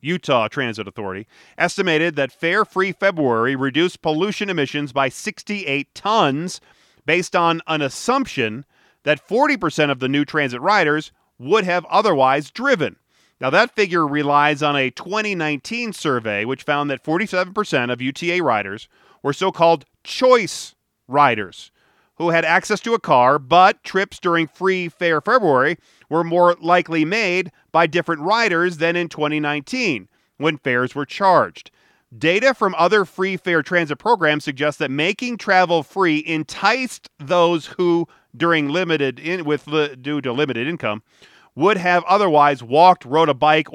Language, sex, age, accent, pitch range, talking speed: English, male, 40-59, American, 145-185 Hz, 140 wpm